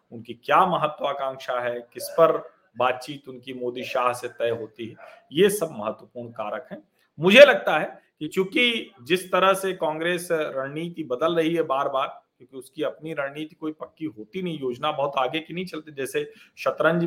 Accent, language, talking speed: native, Hindi, 180 wpm